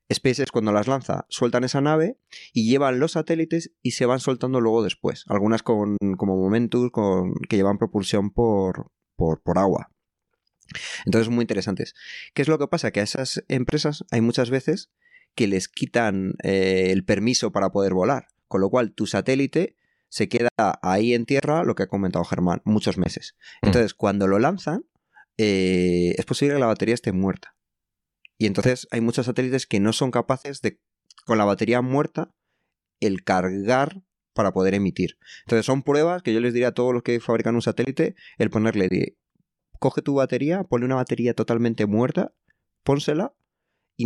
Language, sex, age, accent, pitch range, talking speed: Spanish, male, 30-49, Spanish, 105-135 Hz, 175 wpm